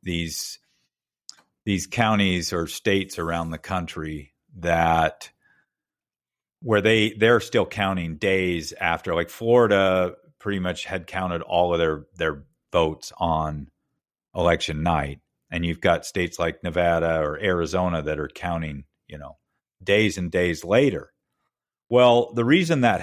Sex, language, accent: male, English, American